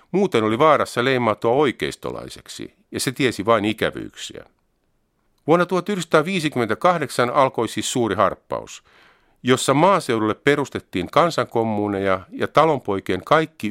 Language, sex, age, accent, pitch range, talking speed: Finnish, male, 50-69, native, 100-140 Hz, 100 wpm